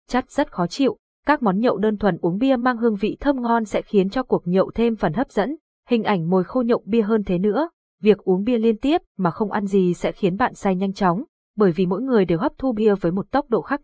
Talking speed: 270 wpm